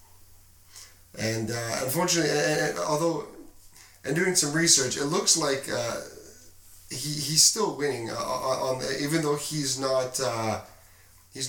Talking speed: 140 wpm